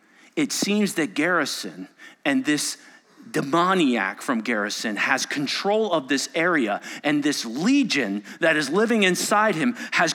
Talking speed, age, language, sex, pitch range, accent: 135 wpm, 40-59, English, male, 190-285 Hz, American